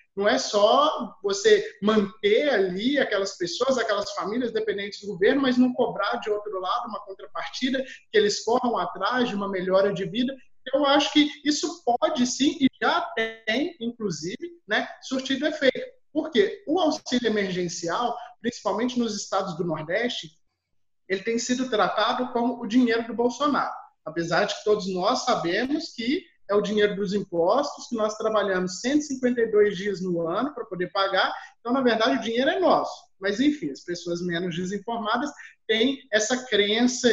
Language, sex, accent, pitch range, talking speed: Portuguese, male, Brazilian, 205-280 Hz, 160 wpm